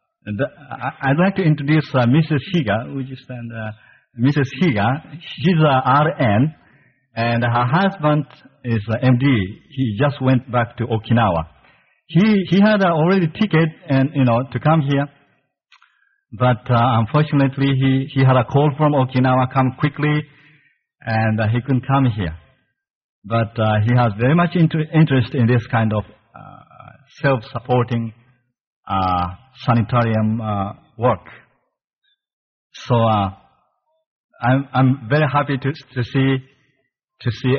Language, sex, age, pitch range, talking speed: English, male, 50-69, 115-145 Hz, 130 wpm